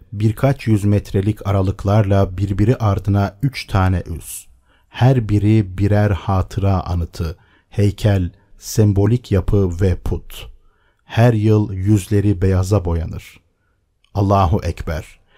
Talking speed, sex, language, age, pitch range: 100 wpm, male, Turkish, 50-69, 90-110 Hz